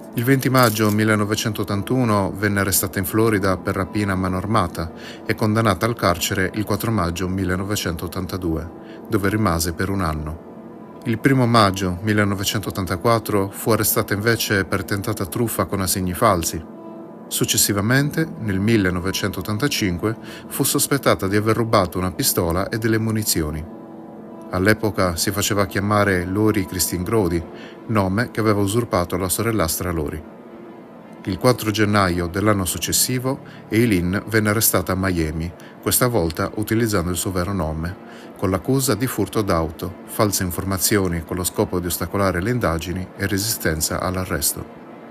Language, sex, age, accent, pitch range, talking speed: Italian, male, 30-49, native, 95-110 Hz, 130 wpm